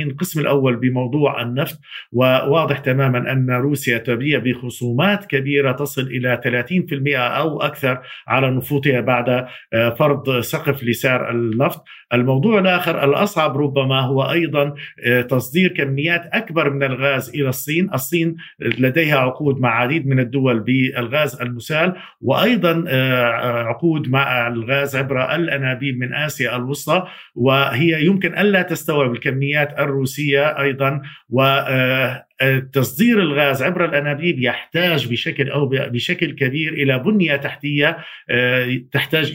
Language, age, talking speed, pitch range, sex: Arabic, 50-69, 115 wpm, 130-155 Hz, male